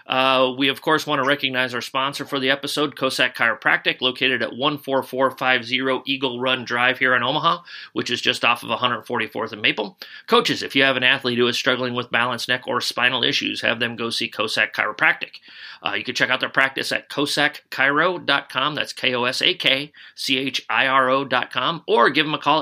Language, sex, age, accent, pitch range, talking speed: English, male, 30-49, American, 125-145 Hz, 180 wpm